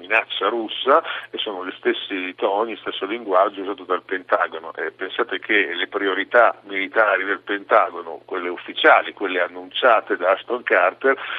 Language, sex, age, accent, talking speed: Italian, male, 50-69, native, 140 wpm